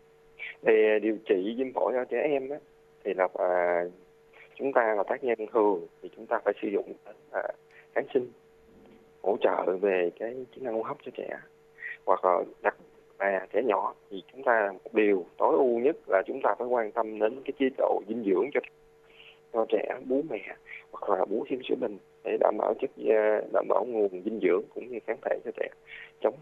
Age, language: 20-39, Vietnamese